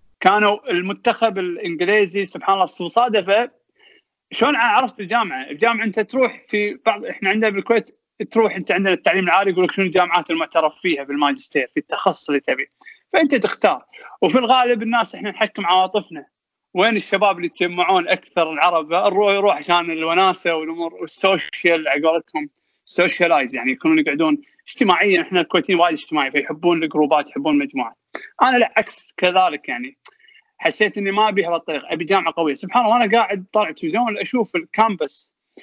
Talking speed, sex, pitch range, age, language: 150 wpm, male, 165-235 Hz, 20-39, Arabic